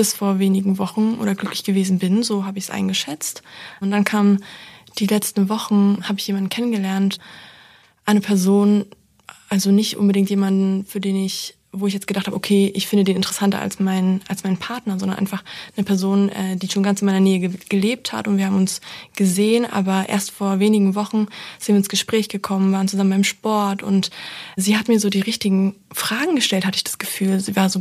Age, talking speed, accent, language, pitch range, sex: 20-39, 200 wpm, German, German, 195-210 Hz, female